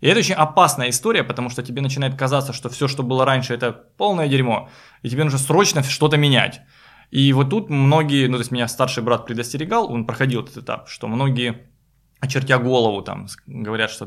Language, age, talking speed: Russian, 20-39, 195 wpm